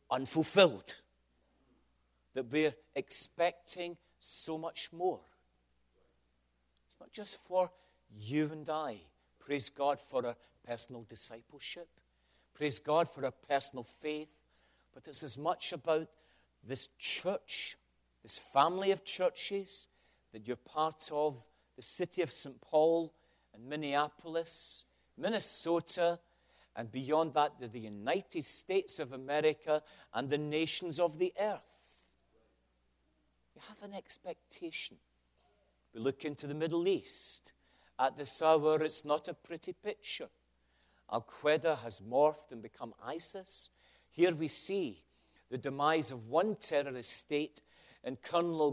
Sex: male